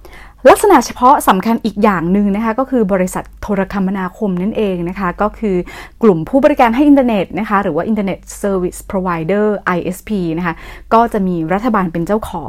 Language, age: Thai, 30-49